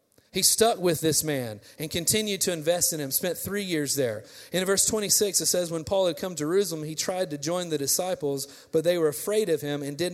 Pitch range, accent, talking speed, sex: 150-195 Hz, American, 235 wpm, male